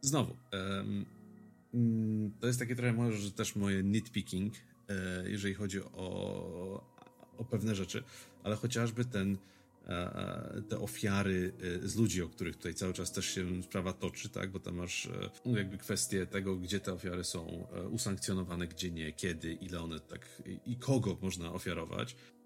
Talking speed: 140 wpm